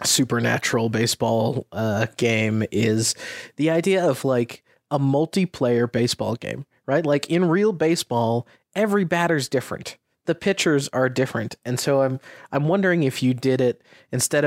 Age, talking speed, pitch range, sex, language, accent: 30-49, 145 wpm, 115-150 Hz, male, English, American